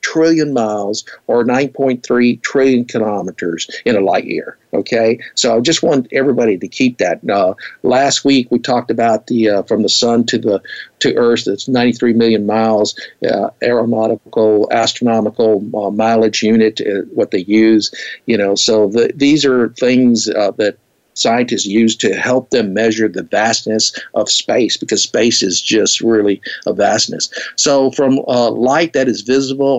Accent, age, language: American, 50-69, English